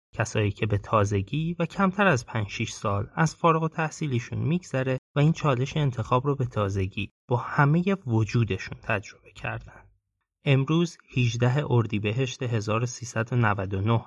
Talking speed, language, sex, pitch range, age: 130 wpm, Persian, male, 110-140 Hz, 30-49